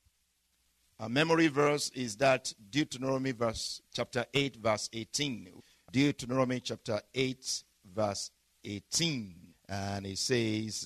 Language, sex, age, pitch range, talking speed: English, male, 50-69, 120-175 Hz, 105 wpm